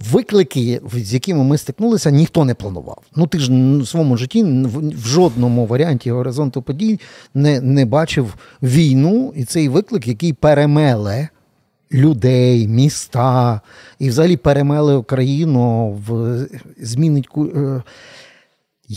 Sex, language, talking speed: male, Ukrainian, 115 wpm